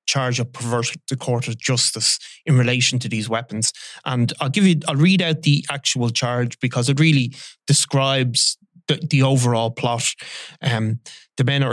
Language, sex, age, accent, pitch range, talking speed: English, male, 20-39, Irish, 120-145 Hz, 175 wpm